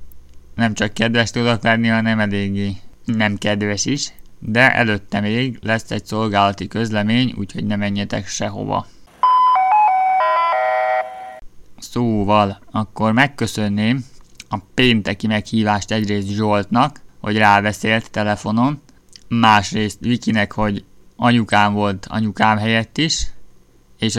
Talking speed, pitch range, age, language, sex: 100 wpm, 105-115 Hz, 20-39, Hungarian, male